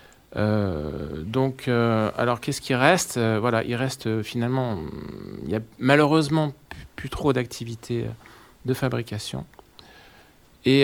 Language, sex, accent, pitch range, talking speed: French, male, French, 115-140 Hz, 135 wpm